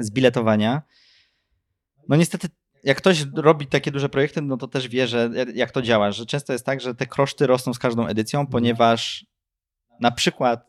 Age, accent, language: 20-39, native, Polish